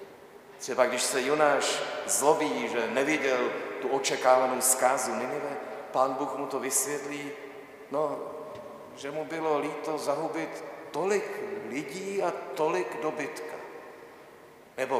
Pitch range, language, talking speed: 135-155 Hz, Czech, 110 wpm